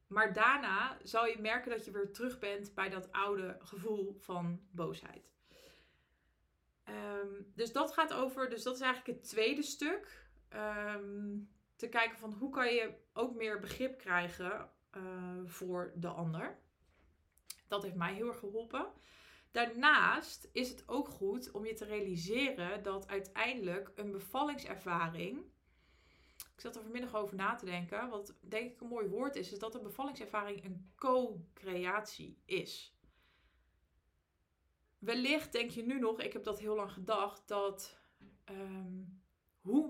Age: 20-39